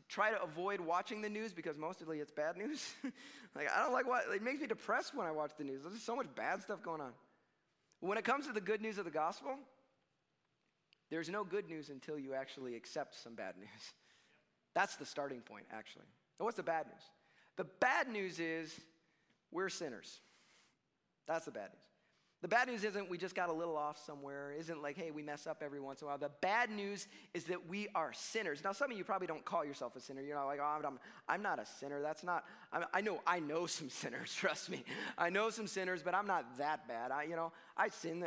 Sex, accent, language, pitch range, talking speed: male, American, English, 145-210 Hz, 235 wpm